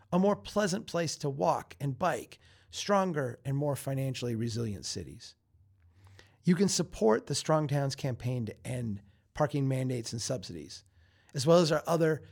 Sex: male